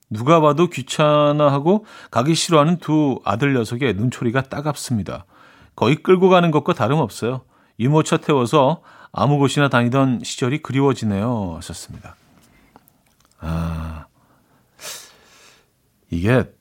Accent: native